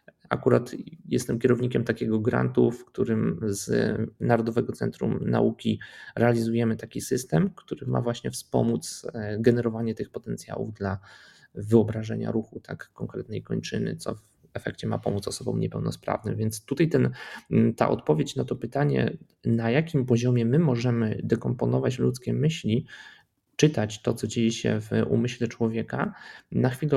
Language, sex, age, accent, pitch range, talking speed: Polish, male, 20-39, native, 110-125 Hz, 130 wpm